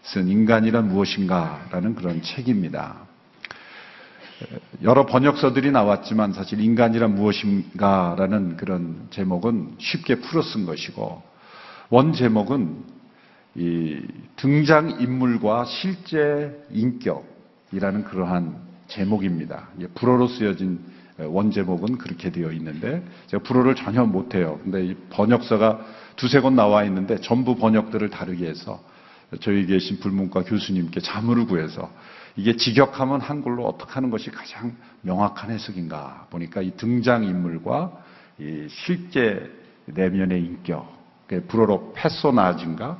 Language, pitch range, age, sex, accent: Korean, 95-130 Hz, 50-69, male, native